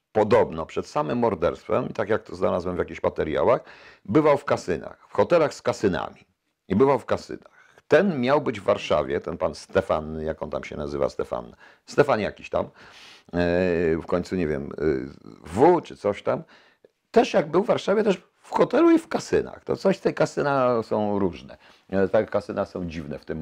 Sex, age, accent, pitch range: male, 50-69, native, 85-110 Hz